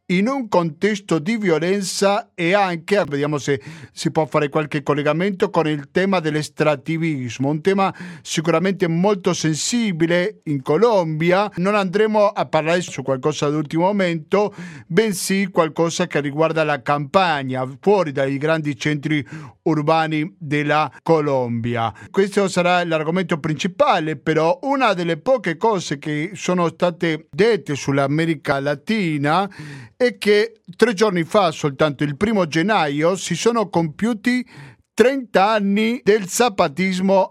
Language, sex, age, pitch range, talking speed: Italian, male, 50-69, 155-195 Hz, 125 wpm